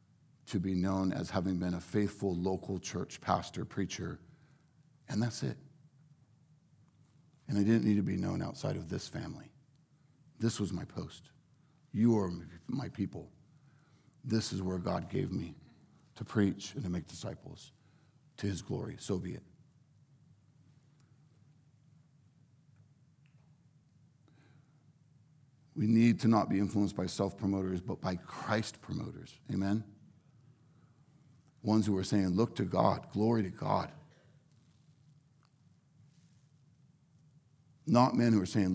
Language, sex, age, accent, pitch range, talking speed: English, male, 50-69, American, 100-145 Hz, 125 wpm